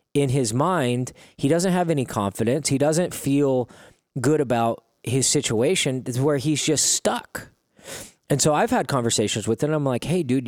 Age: 20-39